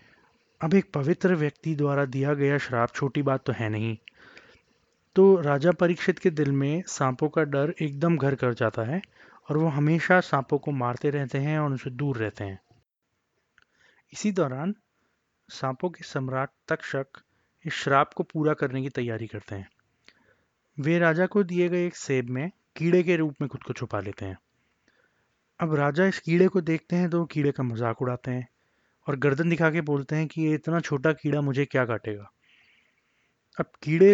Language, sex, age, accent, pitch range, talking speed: Hindi, male, 30-49, native, 130-165 Hz, 180 wpm